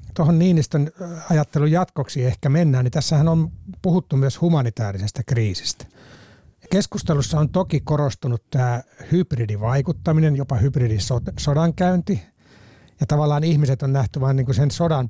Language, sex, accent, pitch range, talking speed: Finnish, male, native, 115-150 Hz, 125 wpm